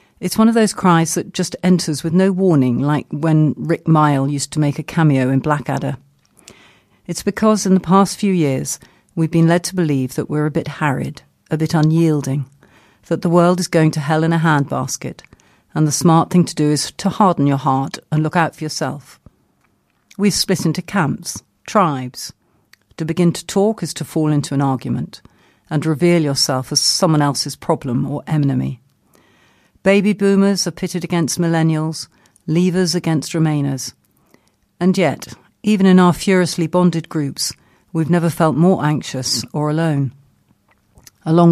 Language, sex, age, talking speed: English, female, 50-69, 170 wpm